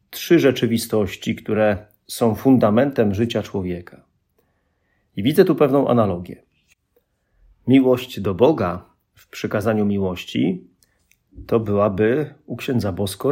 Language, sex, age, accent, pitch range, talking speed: Polish, male, 40-59, native, 95-115 Hz, 105 wpm